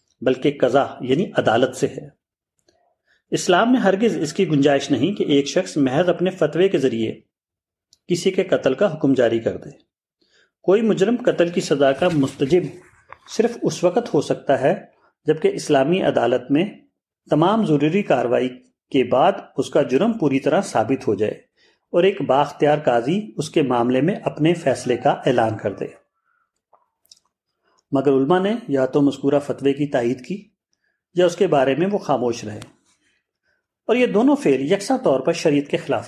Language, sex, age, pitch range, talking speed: Urdu, male, 40-59, 135-185 Hz, 170 wpm